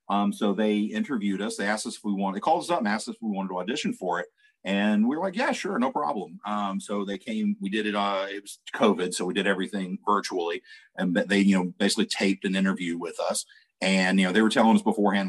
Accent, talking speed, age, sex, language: American, 265 wpm, 40-59, male, English